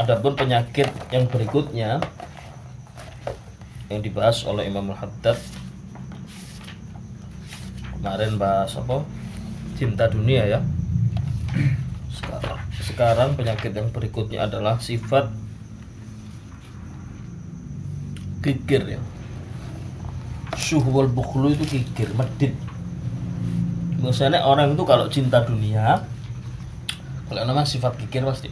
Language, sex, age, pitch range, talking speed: Malay, male, 20-39, 105-130 Hz, 85 wpm